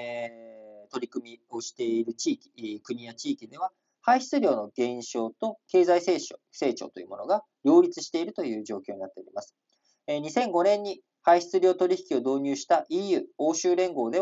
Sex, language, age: male, Japanese, 40-59